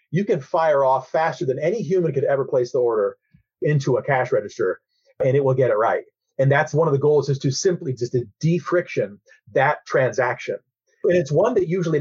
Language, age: English, 30-49